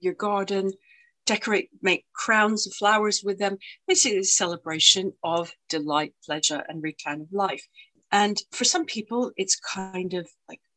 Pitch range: 160-210 Hz